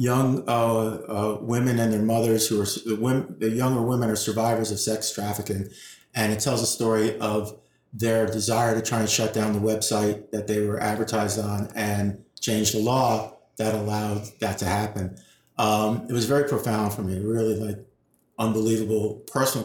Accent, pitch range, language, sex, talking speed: American, 110-115 Hz, English, male, 175 wpm